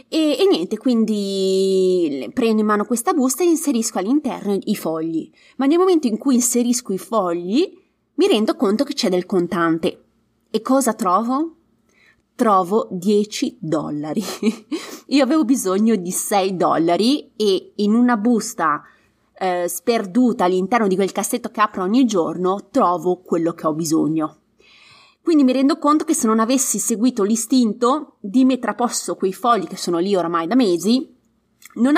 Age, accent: 20-39, native